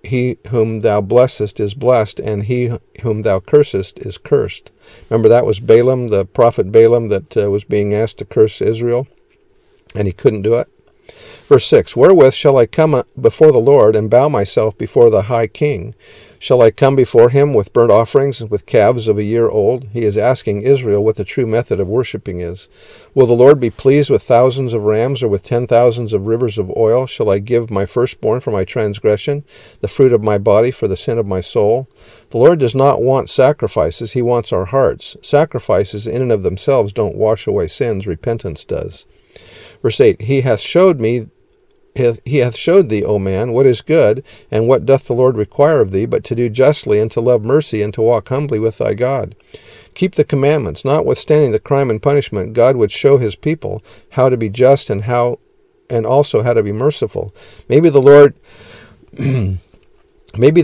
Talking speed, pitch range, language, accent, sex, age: 200 wpm, 110-140 Hz, English, American, male, 50-69